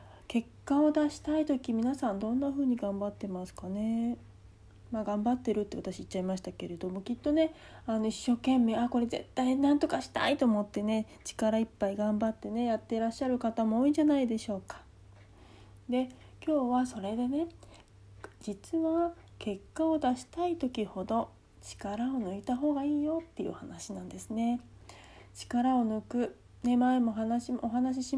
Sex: female